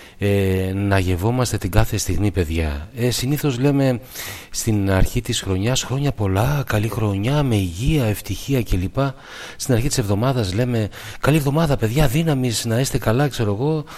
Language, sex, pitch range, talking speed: Greek, male, 90-125 Hz, 155 wpm